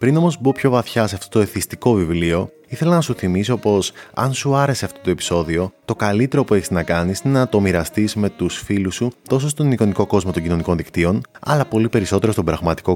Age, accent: 20-39, native